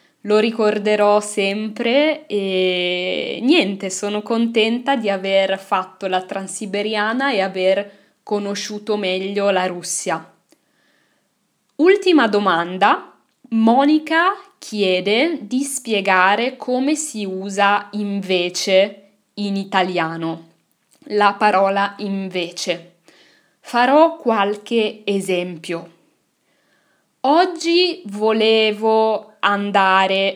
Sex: female